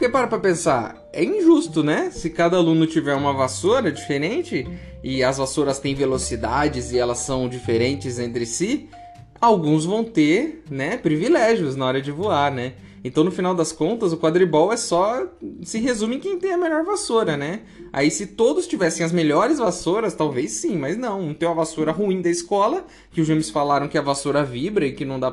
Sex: male